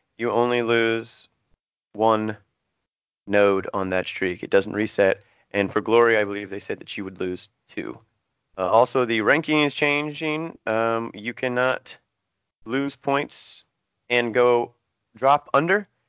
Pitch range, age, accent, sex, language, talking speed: 105-135 Hz, 30-49, American, male, English, 140 wpm